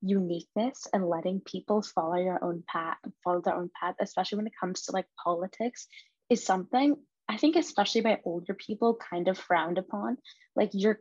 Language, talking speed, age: English, 180 wpm, 20-39